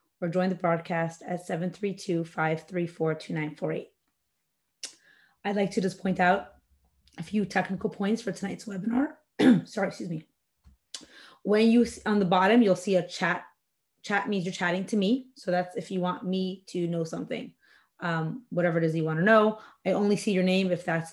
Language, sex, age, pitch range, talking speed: English, female, 30-49, 170-200 Hz, 175 wpm